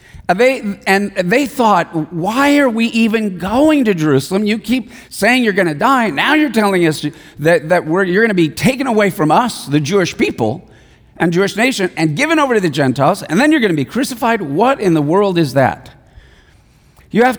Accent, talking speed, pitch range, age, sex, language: American, 205 wpm, 165-225 Hz, 50-69, male, English